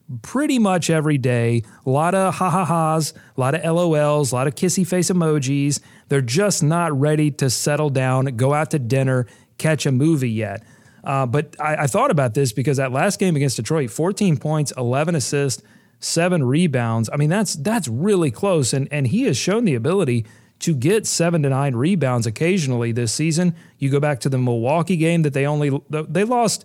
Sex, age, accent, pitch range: male, 40-59, American, 130-165 Hz